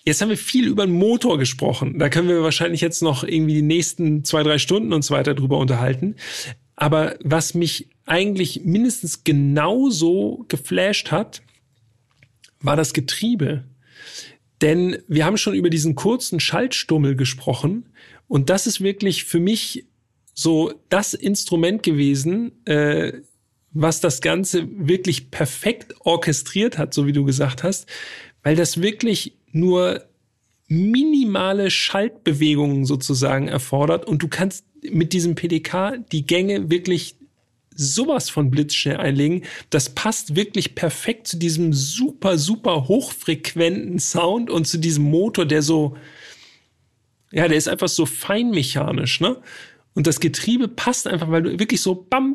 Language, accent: German, German